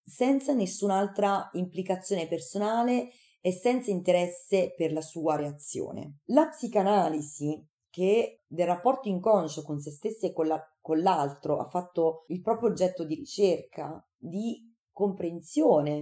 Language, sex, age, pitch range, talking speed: Italian, female, 30-49, 155-200 Hz, 125 wpm